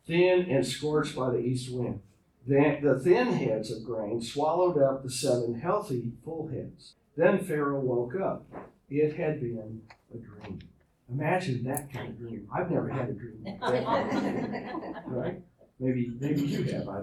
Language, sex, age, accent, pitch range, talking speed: English, male, 50-69, American, 130-175 Hz, 175 wpm